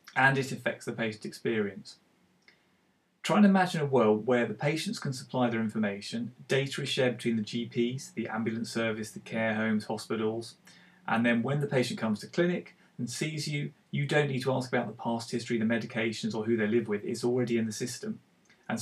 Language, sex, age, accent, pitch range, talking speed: English, male, 30-49, British, 115-145 Hz, 205 wpm